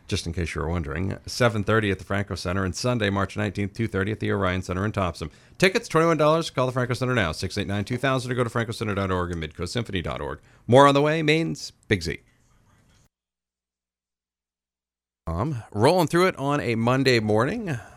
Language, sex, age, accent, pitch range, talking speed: English, male, 40-59, American, 90-120 Hz, 165 wpm